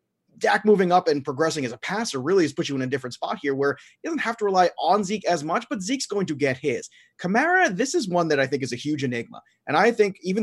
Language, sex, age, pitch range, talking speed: English, male, 30-49, 140-195 Hz, 275 wpm